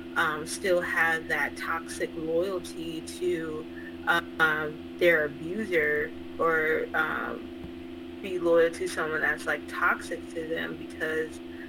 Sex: female